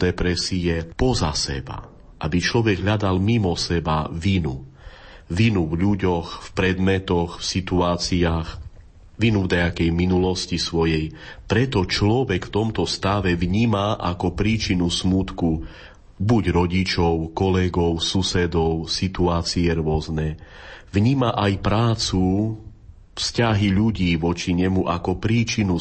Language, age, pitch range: Slovak, 30-49, 85-100 Hz